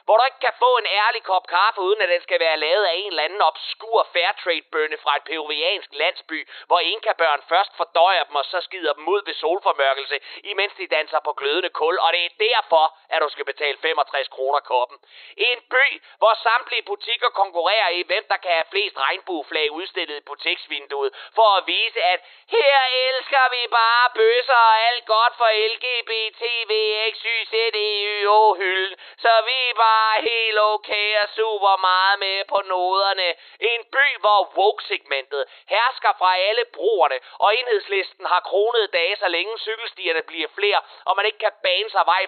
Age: 30-49